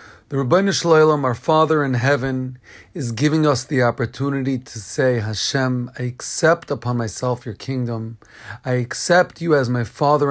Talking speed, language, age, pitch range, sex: 155 wpm, English, 40-59, 120-145 Hz, male